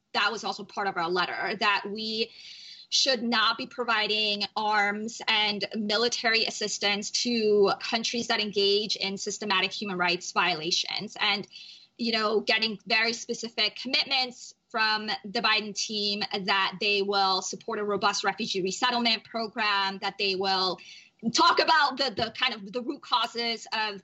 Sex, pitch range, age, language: female, 195-225 Hz, 20-39, English